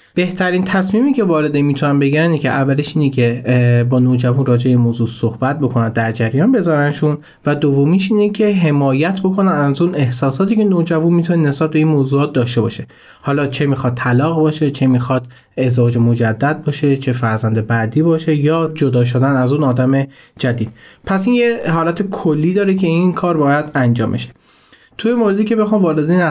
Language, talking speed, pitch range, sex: Persian, 170 wpm, 125-160 Hz, male